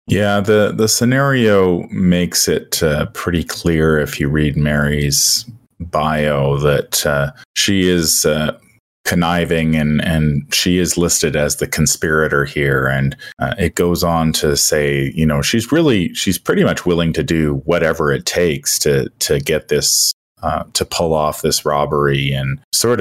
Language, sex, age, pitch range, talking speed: English, male, 30-49, 70-85 Hz, 160 wpm